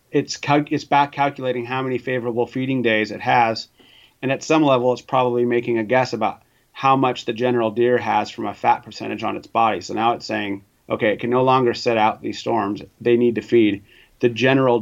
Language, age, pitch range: English, 30-49, 115-125 Hz